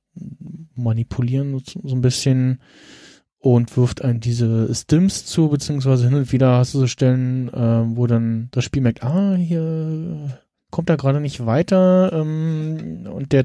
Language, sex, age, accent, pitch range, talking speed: German, male, 20-39, German, 120-150 Hz, 150 wpm